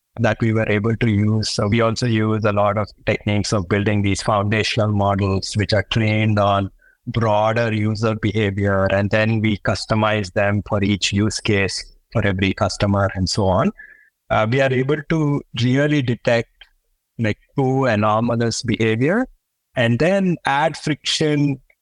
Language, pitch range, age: English, 105-130 Hz, 50-69